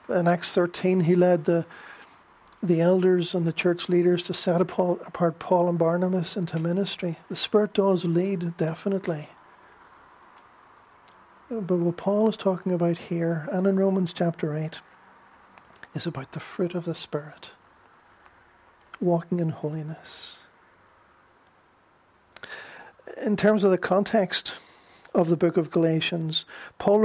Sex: male